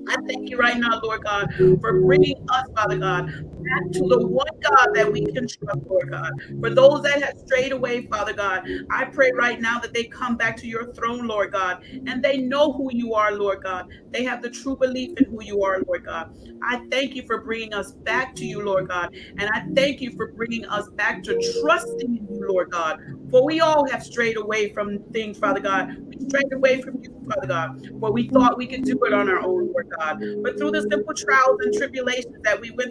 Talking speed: 230 wpm